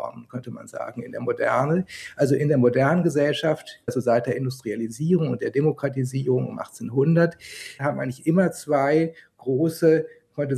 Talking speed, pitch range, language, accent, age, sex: 145 wpm, 130-155 Hz, German, German, 50-69, male